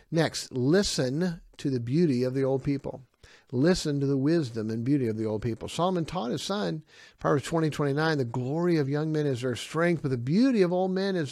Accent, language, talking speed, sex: American, English, 215 wpm, male